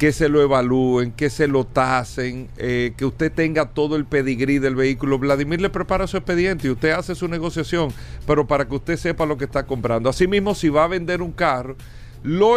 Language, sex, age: Spanish, male, 40-59